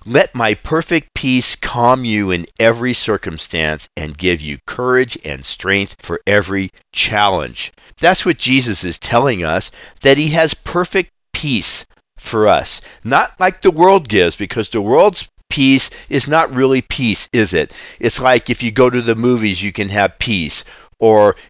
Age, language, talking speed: 50-69, English, 165 wpm